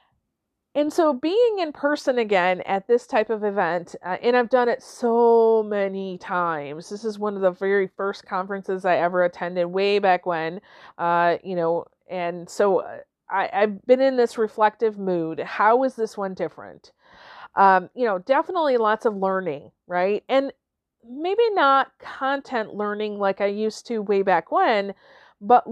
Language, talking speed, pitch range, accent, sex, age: English, 165 wpm, 195-255 Hz, American, female, 40-59